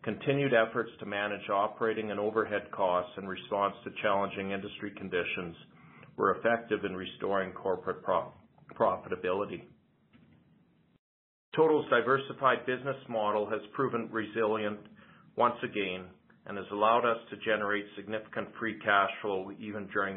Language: English